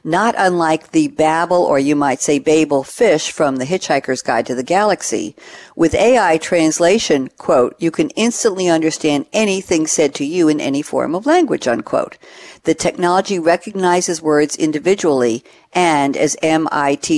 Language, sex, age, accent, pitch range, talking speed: English, female, 60-79, American, 150-220 Hz, 150 wpm